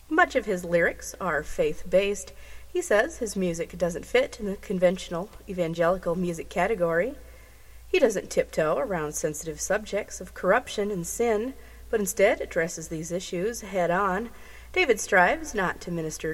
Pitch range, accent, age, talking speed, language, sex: 170-220 Hz, American, 30-49, 145 wpm, English, female